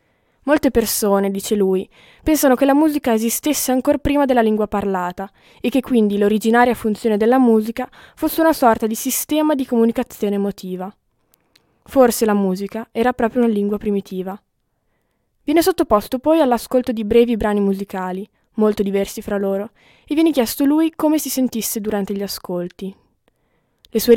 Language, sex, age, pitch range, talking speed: Italian, female, 20-39, 200-255 Hz, 150 wpm